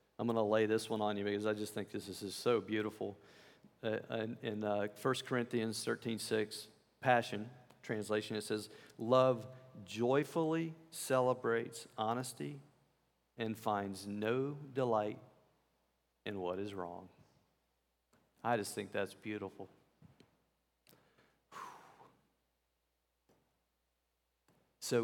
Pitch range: 100-125 Hz